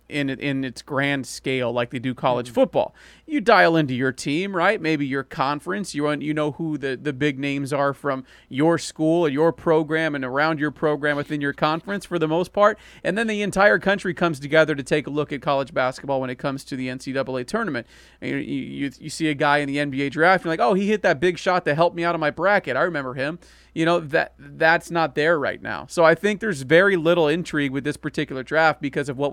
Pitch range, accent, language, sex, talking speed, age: 140-170 Hz, American, English, male, 240 wpm, 40-59